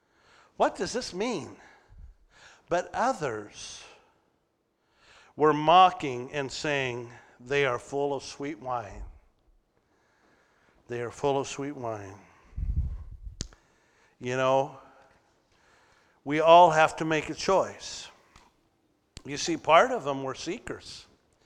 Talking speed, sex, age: 105 wpm, male, 50-69